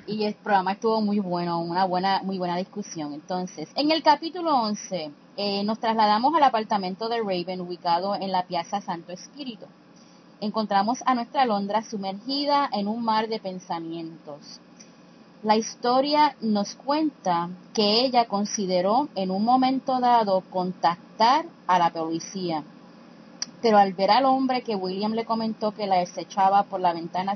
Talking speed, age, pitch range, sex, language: 150 wpm, 30-49, 180-230 Hz, female, English